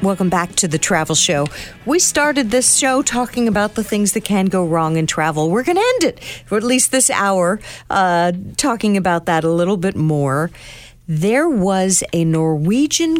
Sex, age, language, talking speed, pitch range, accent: female, 50-69, English, 190 wpm, 160-235 Hz, American